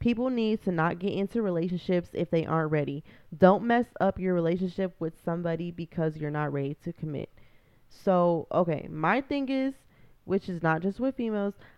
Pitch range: 160-190 Hz